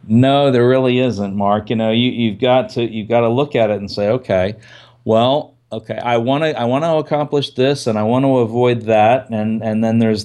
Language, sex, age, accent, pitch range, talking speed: English, male, 40-59, American, 110-135 Hz, 235 wpm